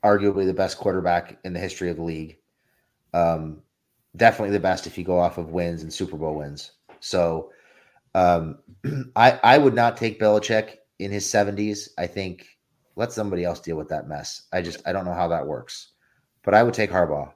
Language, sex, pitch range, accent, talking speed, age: English, male, 85-105 Hz, American, 195 wpm, 30-49